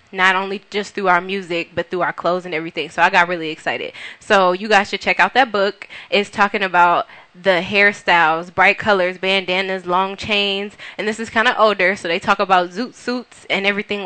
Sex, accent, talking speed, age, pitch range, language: female, American, 210 wpm, 20-39, 180-205 Hz, English